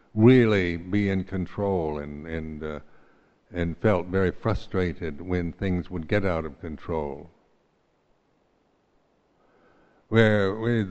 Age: 60-79